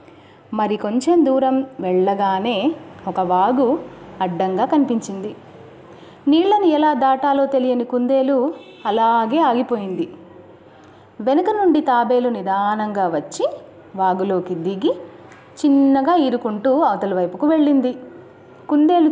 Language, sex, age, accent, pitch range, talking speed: Telugu, female, 30-49, native, 215-295 Hz, 90 wpm